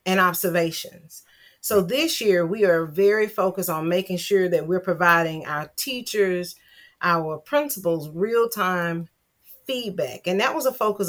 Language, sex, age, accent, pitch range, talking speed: English, female, 40-59, American, 170-210 Hz, 140 wpm